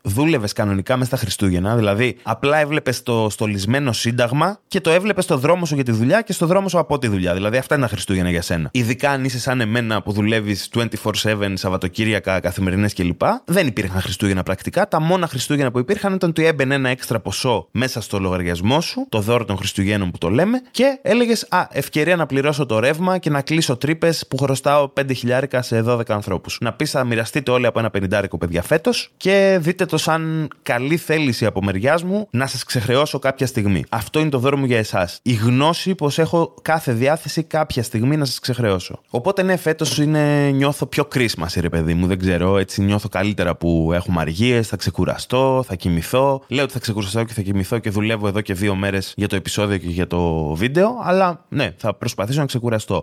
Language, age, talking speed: Greek, 20-39, 200 wpm